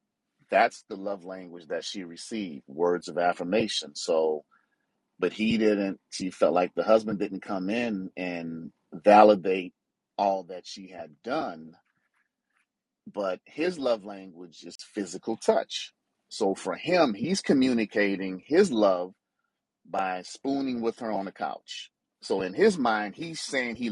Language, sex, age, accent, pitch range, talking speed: English, male, 40-59, American, 90-115 Hz, 145 wpm